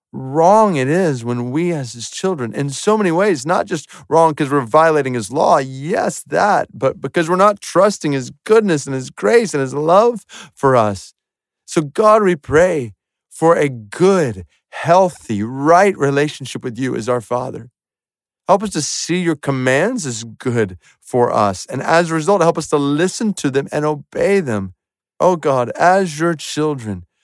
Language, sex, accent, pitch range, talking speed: English, male, American, 120-165 Hz, 175 wpm